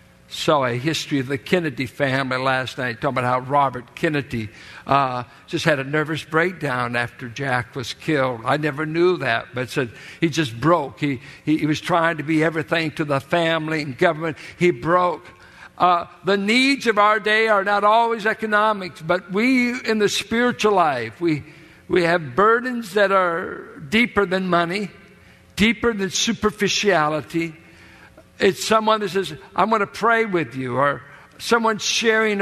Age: 60-79